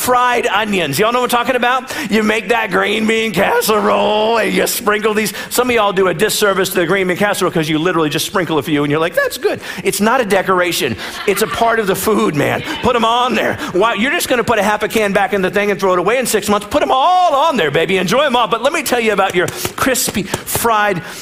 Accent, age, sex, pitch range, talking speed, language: American, 50-69, male, 190-240 Hz, 270 wpm, English